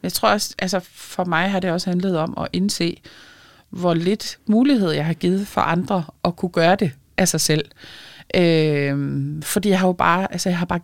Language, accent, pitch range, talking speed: Danish, native, 165-195 Hz, 210 wpm